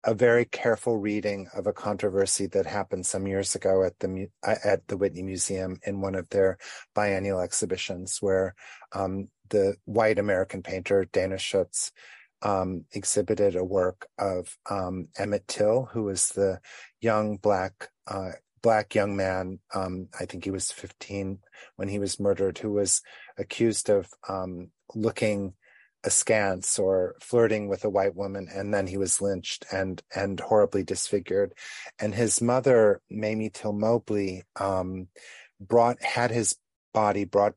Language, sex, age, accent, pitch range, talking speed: English, male, 30-49, American, 95-105 Hz, 150 wpm